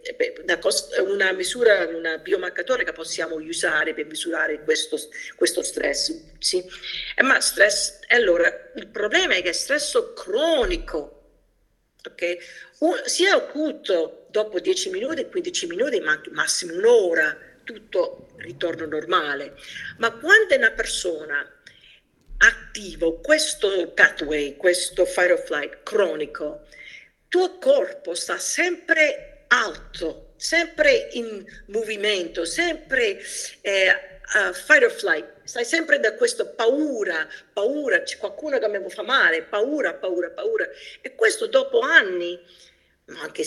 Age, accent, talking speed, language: 50-69, native, 115 wpm, Italian